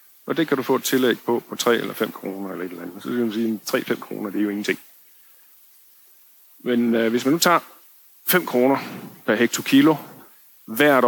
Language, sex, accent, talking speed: Danish, male, native, 210 wpm